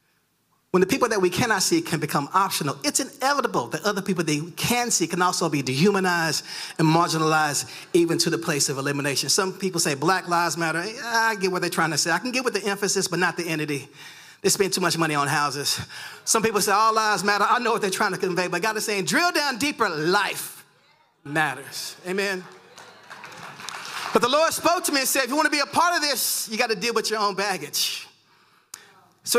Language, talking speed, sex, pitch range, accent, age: English, 225 wpm, male, 170-235 Hz, American, 30-49